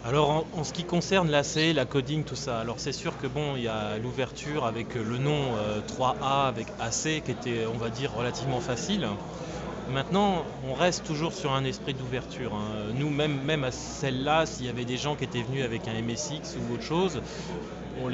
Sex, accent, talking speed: male, French, 205 wpm